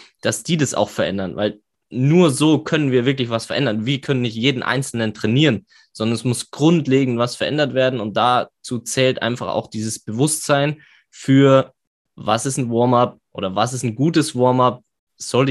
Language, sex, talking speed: German, male, 180 wpm